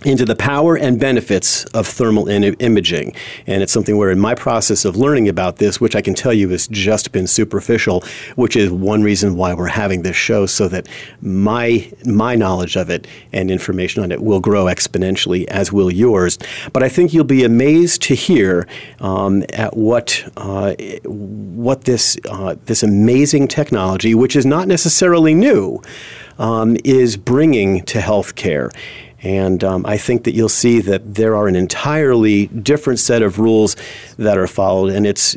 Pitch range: 95-125 Hz